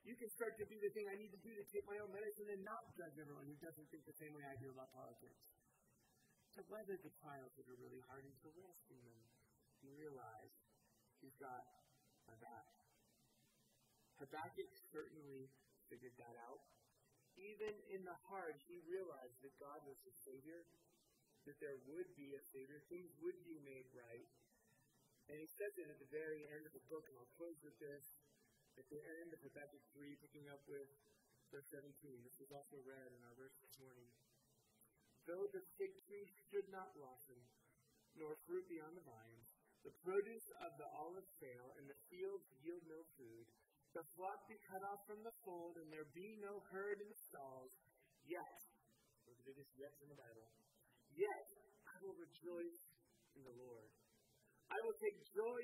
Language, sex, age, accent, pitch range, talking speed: English, male, 30-49, American, 135-205 Hz, 180 wpm